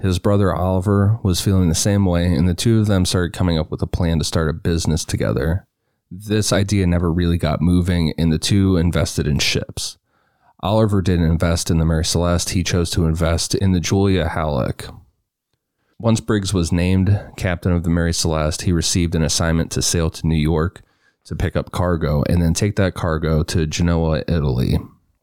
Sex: male